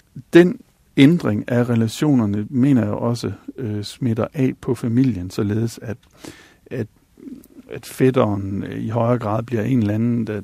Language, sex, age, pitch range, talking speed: Danish, male, 60-79, 110-130 Hz, 145 wpm